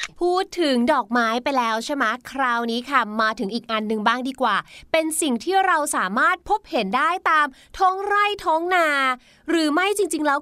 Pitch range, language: 235-335 Hz, Thai